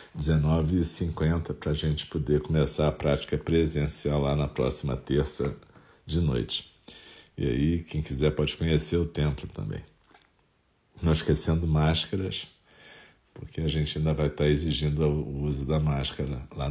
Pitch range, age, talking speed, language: 75-85 Hz, 50-69, 140 wpm, Portuguese